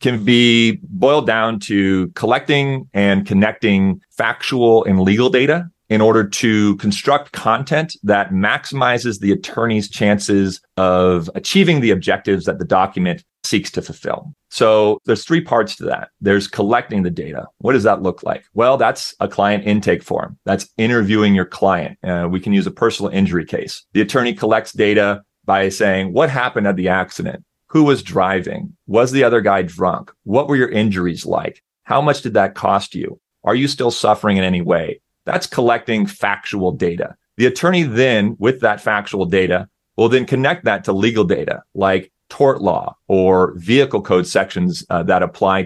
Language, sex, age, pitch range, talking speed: English, male, 30-49, 95-120 Hz, 170 wpm